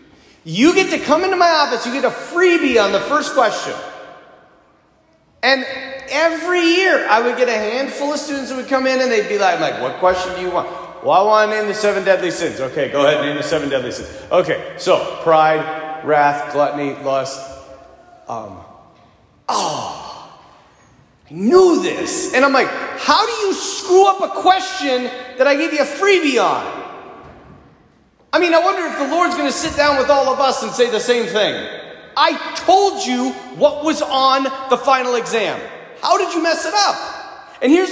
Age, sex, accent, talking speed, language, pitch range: 30-49, male, American, 195 wpm, English, 215-330 Hz